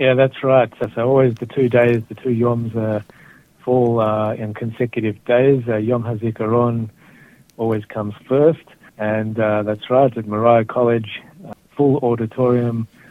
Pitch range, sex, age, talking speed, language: 105-125 Hz, male, 60-79, 155 wpm, Hebrew